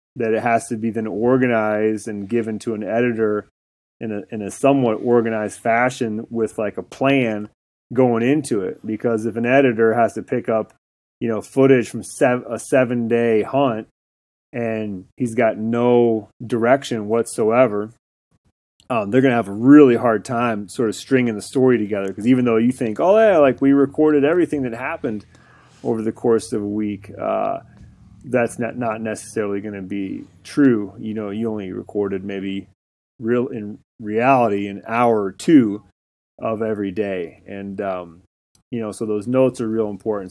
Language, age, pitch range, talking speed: English, 30-49, 105-125 Hz, 175 wpm